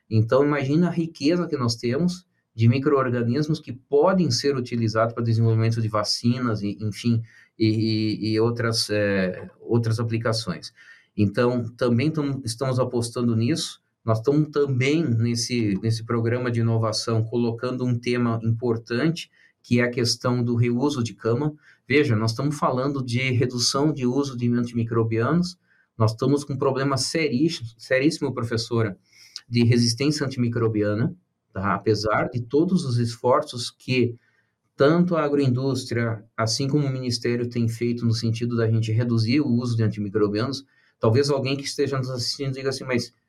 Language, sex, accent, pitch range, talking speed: Portuguese, male, Brazilian, 115-140 Hz, 145 wpm